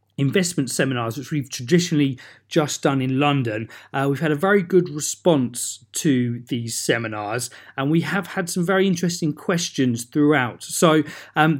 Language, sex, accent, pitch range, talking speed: English, male, British, 135-175 Hz, 155 wpm